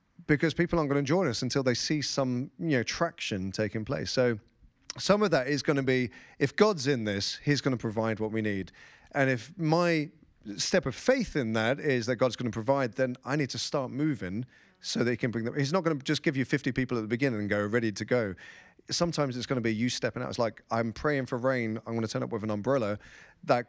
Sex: male